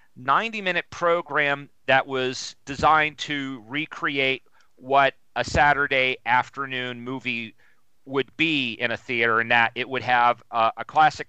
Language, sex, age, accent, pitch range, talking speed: English, male, 40-59, American, 125-150 Hz, 140 wpm